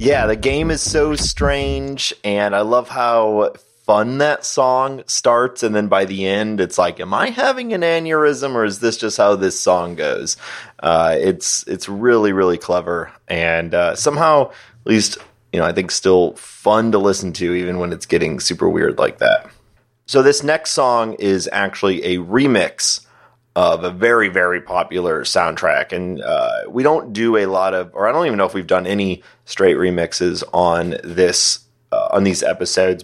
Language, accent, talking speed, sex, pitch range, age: English, American, 185 wpm, male, 90-120 Hz, 30-49